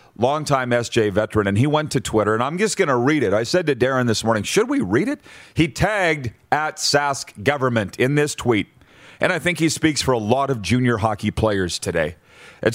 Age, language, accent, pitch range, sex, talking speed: 40-59, English, American, 115-145 Hz, male, 220 wpm